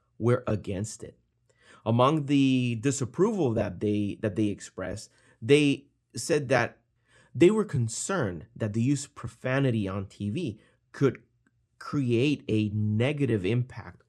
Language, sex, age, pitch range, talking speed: English, male, 30-49, 105-130 Hz, 125 wpm